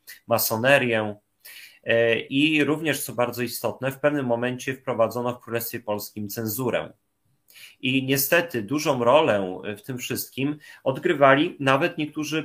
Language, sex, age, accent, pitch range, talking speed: Polish, male, 30-49, native, 110-135 Hz, 115 wpm